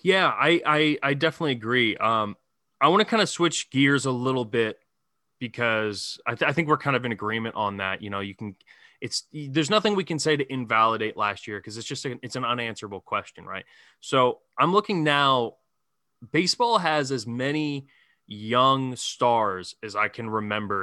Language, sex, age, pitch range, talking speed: English, male, 20-39, 115-140 Hz, 190 wpm